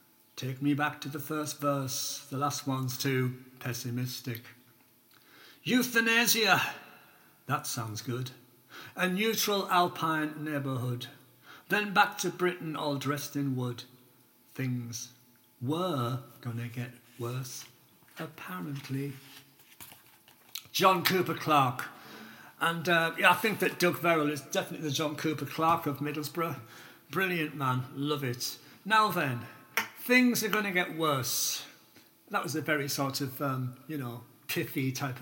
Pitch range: 130-175 Hz